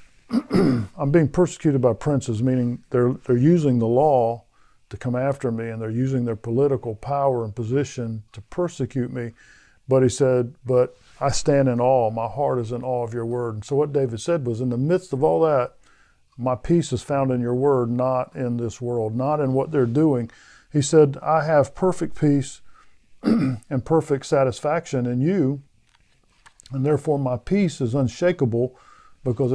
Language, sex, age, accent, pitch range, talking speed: English, male, 50-69, American, 120-145 Hz, 180 wpm